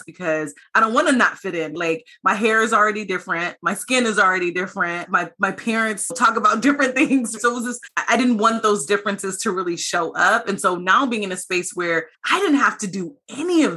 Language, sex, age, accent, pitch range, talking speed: English, female, 20-39, American, 175-225 Hz, 235 wpm